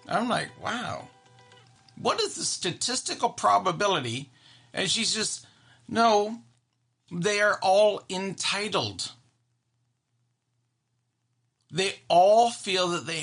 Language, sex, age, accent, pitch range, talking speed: English, male, 40-59, American, 120-180 Hz, 95 wpm